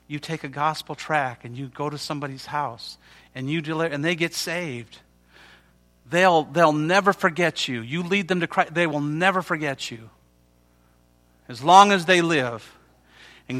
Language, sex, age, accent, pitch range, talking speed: English, male, 40-59, American, 125-160 Hz, 170 wpm